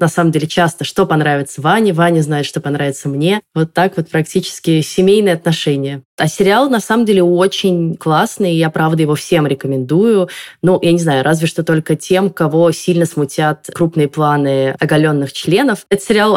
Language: Russian